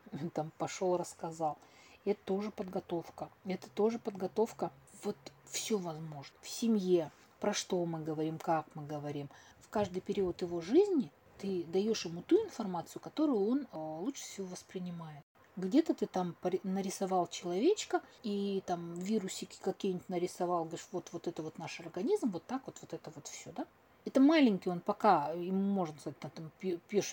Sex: female